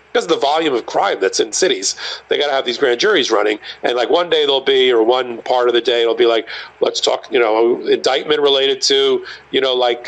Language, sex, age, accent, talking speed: English, male, 40-59, American, 250 wpm